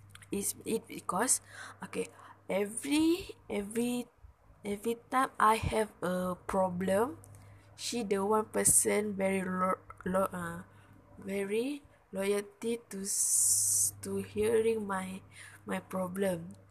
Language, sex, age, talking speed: English, female, 20-39, 95 wpm